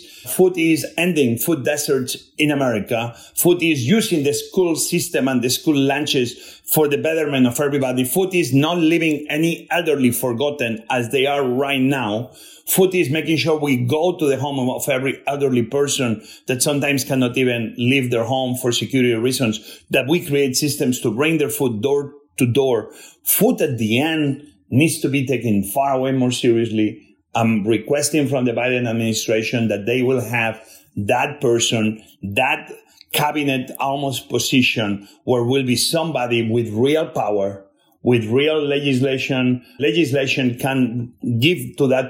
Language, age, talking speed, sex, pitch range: English, 40-59, 160 wpm, male, 120-150 Hz